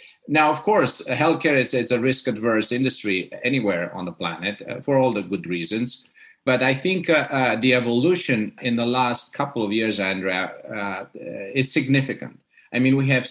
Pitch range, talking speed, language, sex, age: 105-130 Hz, 180 wpm, English, male, 50-69